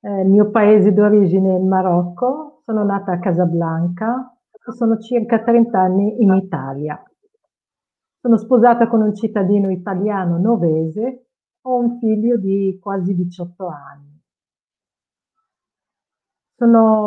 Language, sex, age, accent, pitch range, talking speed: Italian, female, 50-69, native, 180-220 Hz, 115 wpm